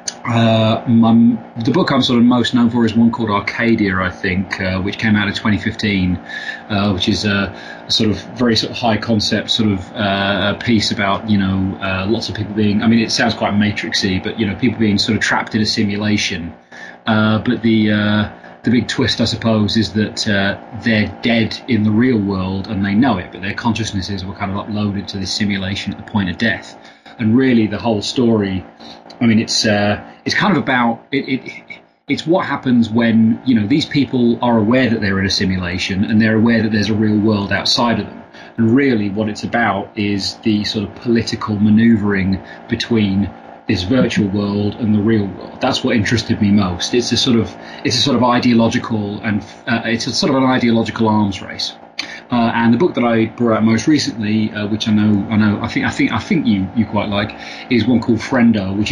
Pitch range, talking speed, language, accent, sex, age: 100-115 Hz, 220 wpm, English, British, male, 30-49